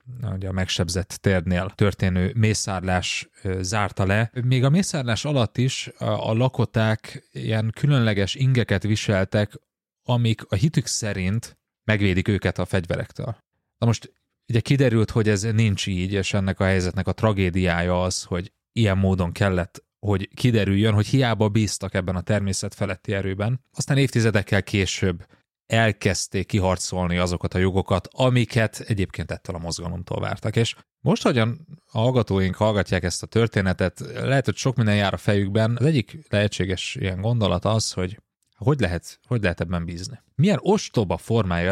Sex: male